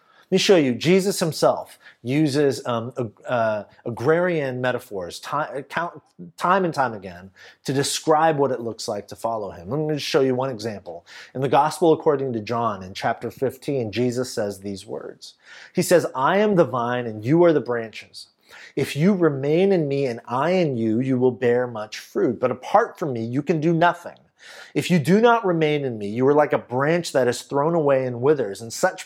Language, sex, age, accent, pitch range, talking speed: English, male, 30-49, American, 125-175 Hz, 205 wpm